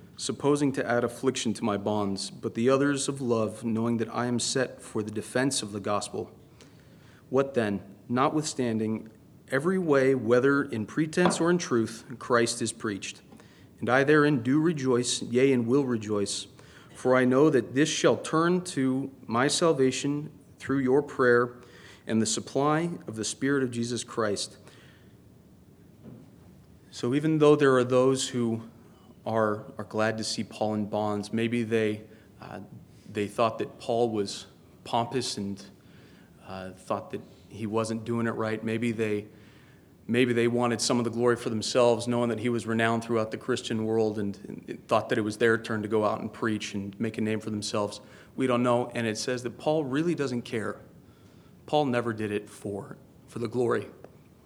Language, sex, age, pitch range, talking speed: English, male, 40-59, 110-135 Hz, 175 wpm